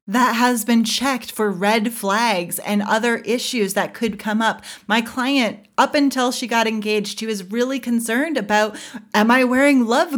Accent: American